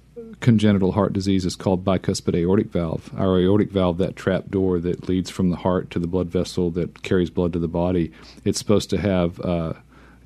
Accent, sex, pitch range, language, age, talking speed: American, male, 85-100 Hz, English, 40-59, 200 wpm